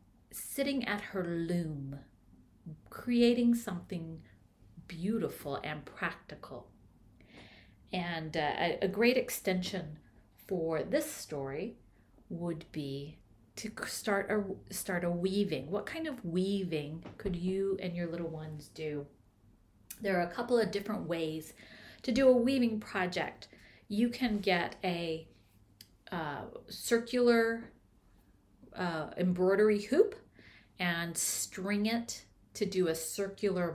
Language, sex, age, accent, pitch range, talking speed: English, female, 40-59, American, 165-225 Hz, 115 wpm